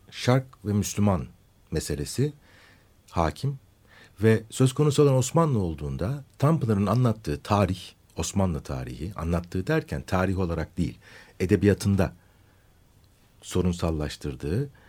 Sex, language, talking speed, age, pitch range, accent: male, Turkish, 95 wpm, 60-79, 90-110 Hz, native